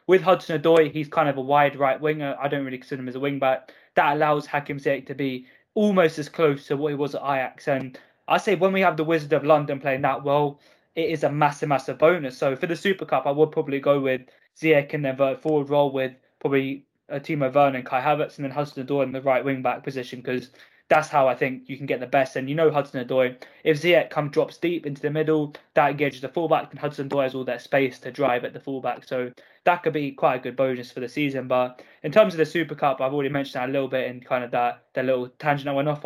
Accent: British